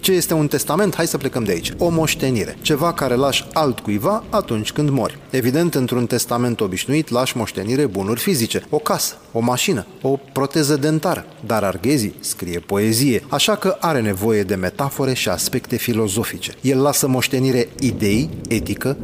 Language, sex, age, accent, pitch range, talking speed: Romanian, male, 30-49, native, 120-150 Hz, 160 wpm